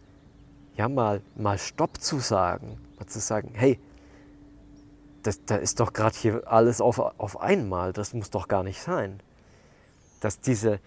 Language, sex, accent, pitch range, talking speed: German, male, German, 100-130 Hz, 155 wpm